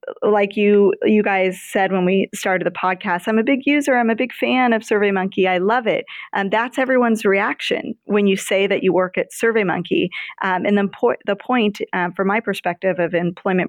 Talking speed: 200 wpm